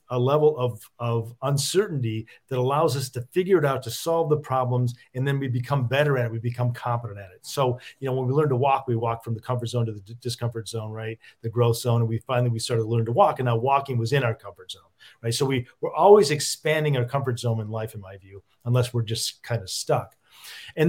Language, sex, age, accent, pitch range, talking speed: English, male, 40-59, American, 115-140 Hz, 255 wpm